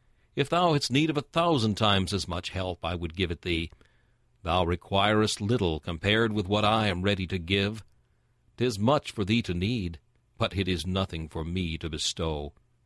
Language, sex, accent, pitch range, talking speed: English, male, American, 90-120 Hz, 190 wpm